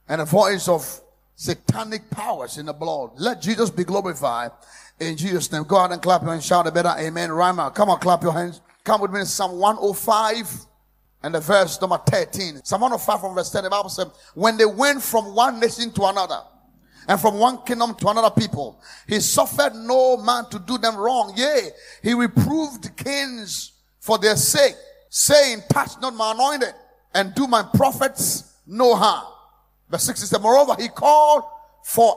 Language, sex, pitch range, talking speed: English, male, 200-275 Hz, 185 wpm